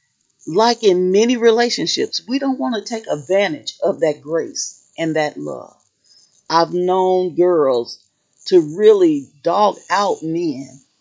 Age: 40-59